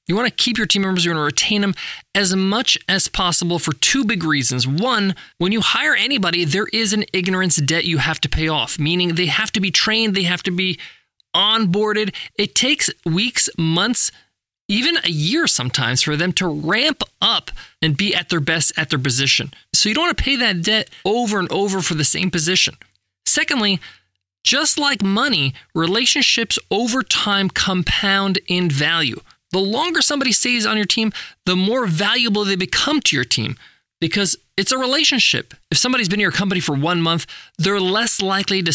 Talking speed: 190 wpm